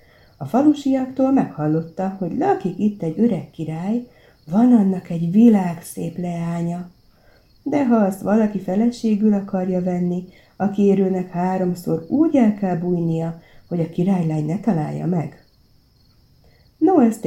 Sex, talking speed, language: female, 125 wpm, Hungarian